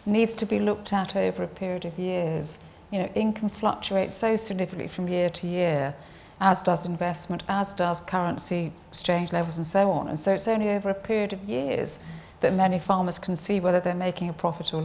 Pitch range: 175-200 Hz